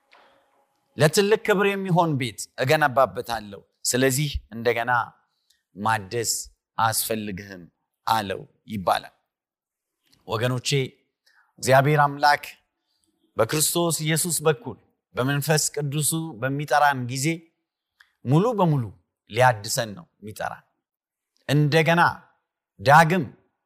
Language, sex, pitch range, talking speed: Amharic, male, 125-160 Hz, 70 wpm